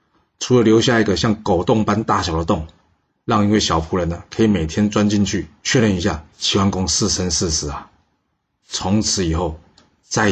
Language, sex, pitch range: Chinese, male, 85-105 Hz